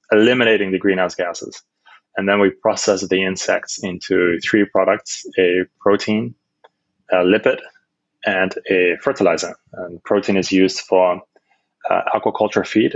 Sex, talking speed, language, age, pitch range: male, 130 wpm, English, 20-39, 95-105 Hz